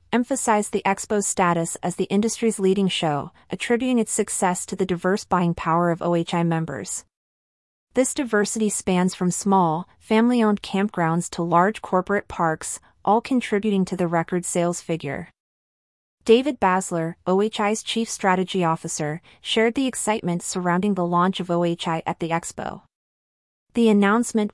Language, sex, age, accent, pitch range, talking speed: English, female, 30-49, American, 170-210 Hz, 140 wpm